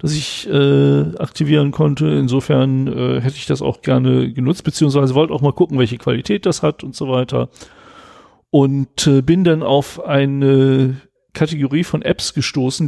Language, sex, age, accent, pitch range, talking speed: German, male, 40-59, German, 120-150 Hz, 165 wpm